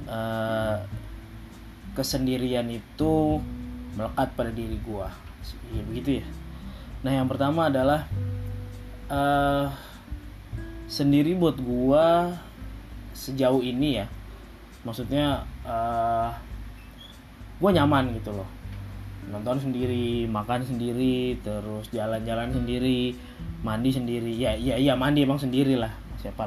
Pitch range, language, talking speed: 110-135 Hz, Indonesian, 100 wpm